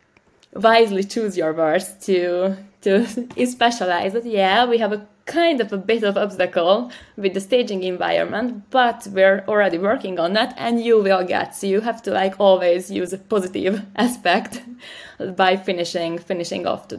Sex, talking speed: female, 170 wpm